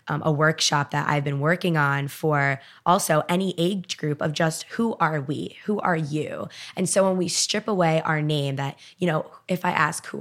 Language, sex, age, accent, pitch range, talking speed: English, female, 20-39, American, 150-175 Hz, 210 wpm